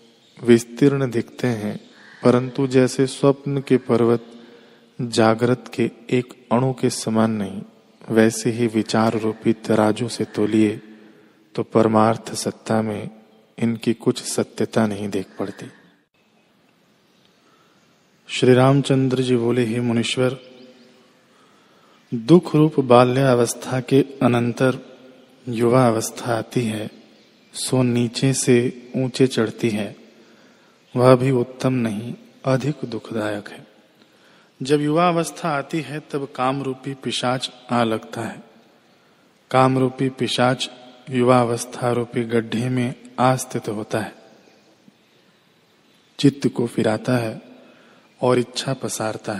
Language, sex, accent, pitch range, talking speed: Hindi, male, native, 115-130 Hz, 105 wpm